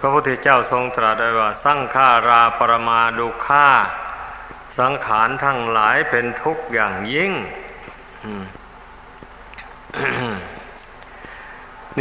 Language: Thai